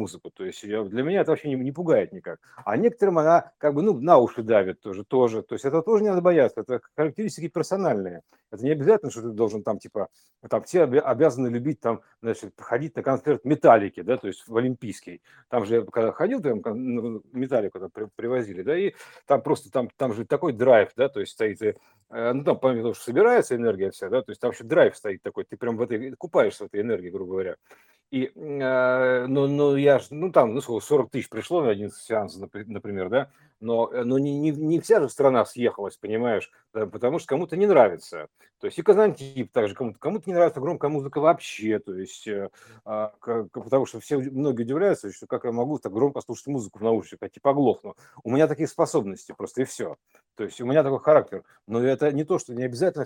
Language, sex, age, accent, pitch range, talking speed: Russian, male, 50-69, native, 115-175 Hz, 215 wpm